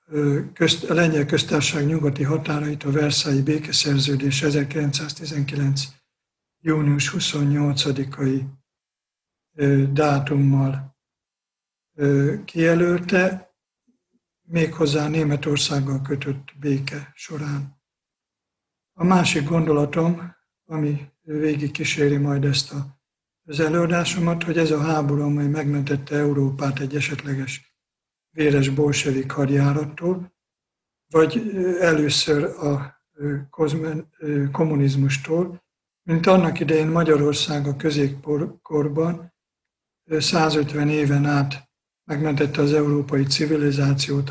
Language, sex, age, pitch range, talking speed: Polish, male, 60-79, 140-155 Hz, 80 wpm